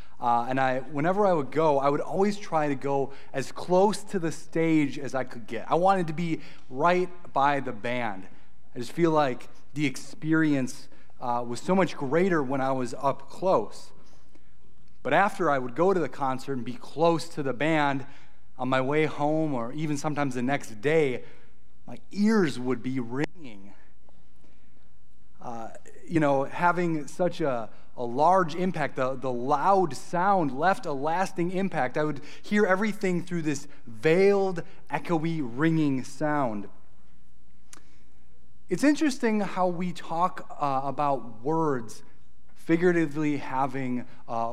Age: 30-49